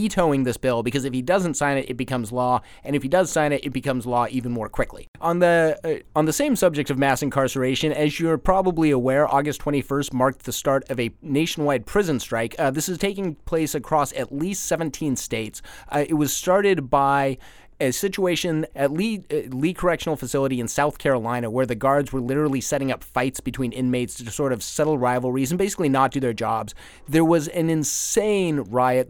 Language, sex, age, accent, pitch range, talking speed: English, male, 30-49, American, 130-160 Hz, 205 wpm